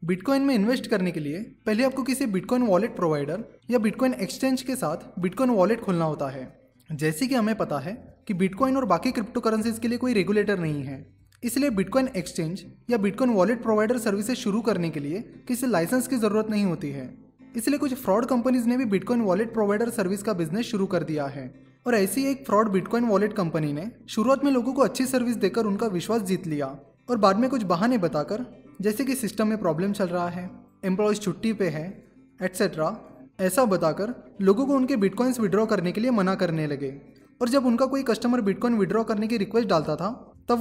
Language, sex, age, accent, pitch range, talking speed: Hindi, male, 20-39, native, 180-250 Hz, 200 wpm